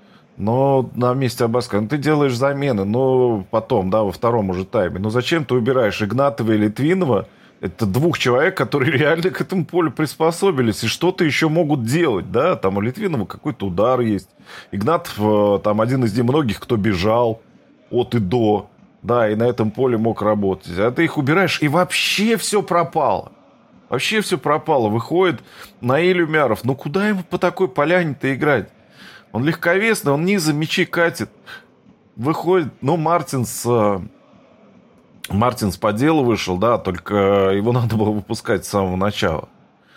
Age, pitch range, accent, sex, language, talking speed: 20-39, 110-160 Hz, native, male, Russian, 155 wpm